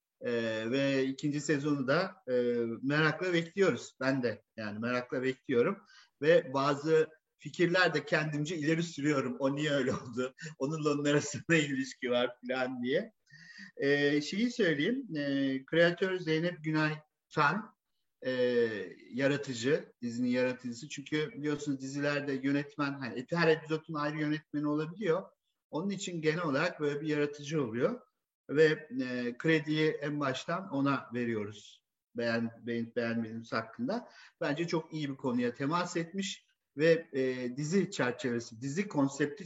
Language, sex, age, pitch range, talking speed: Turkish, male, 50-69, 130-165 Hz, 120 wpm